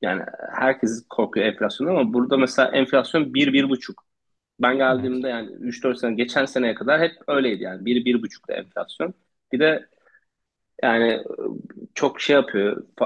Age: 30-49